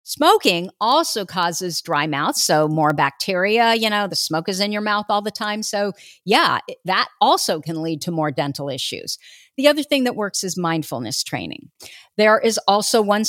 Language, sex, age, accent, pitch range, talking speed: English, female, 50-69, American, 175-215 Hz, 185 wpm